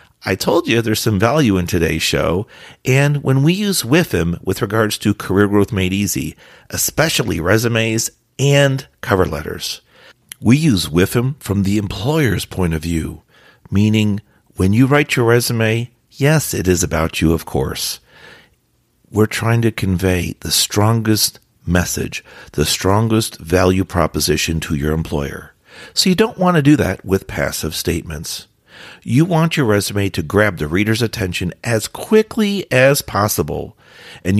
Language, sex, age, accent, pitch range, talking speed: English, male, 50-69, American, 90-125 Hz, 150 wpm